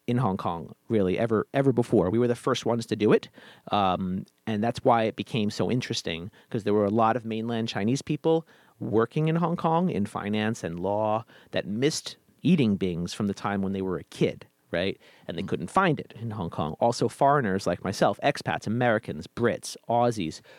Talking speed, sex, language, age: 200 wpm, male, English, 40-59